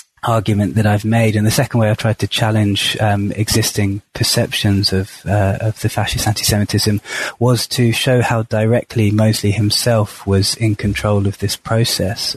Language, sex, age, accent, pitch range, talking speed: English, male, 20-39, British, 105-120 Hz, 165 wpm